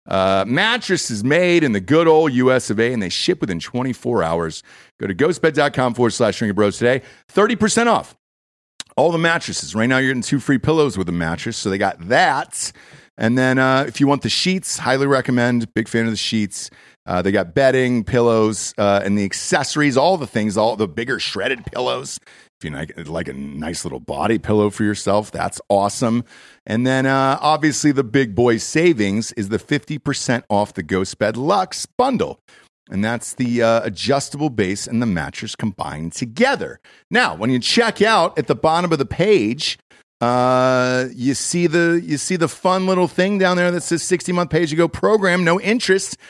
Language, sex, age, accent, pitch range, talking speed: English, male, 40-59, American, 110-160 Hz, 195 wpm